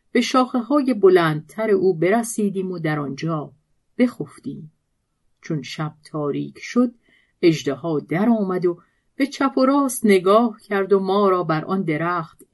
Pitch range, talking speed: 160-215 Hz, 135 wpm